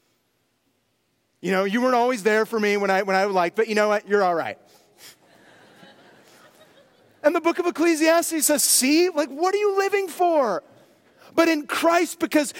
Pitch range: 205-285 Hz